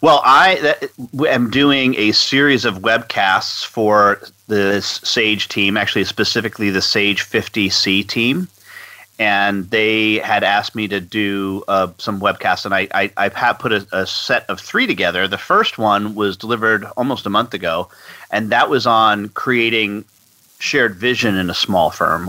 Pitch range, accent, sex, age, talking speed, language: 95-115 Hz, American, male, 40-59, 160 wpm, English